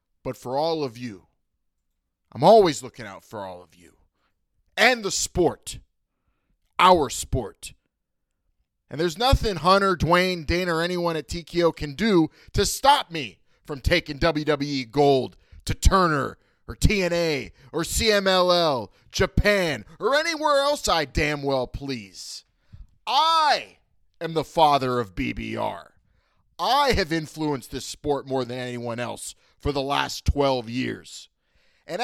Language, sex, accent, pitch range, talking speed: English, male, American, 130-215 Hz, 135 wpm